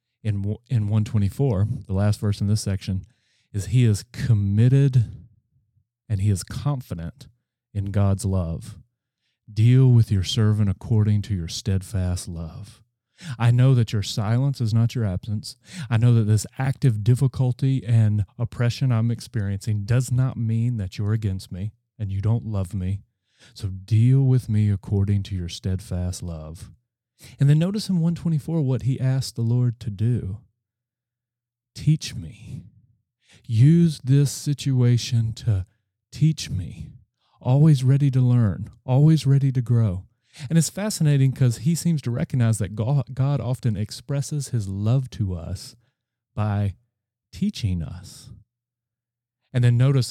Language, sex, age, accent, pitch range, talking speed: English, male, 30-49, American, 105-130 Hz, 140 wpm